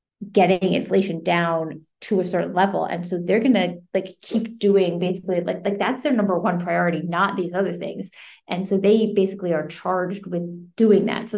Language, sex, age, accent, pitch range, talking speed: English, female, 30-49, American, 175-205 Hz, 195 wpm